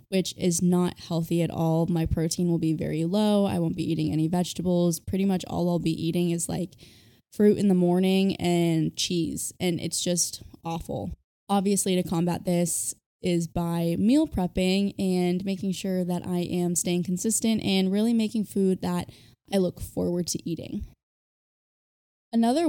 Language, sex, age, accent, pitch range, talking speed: English, female, 10-29, American, 165-190 Hz, 165 wpm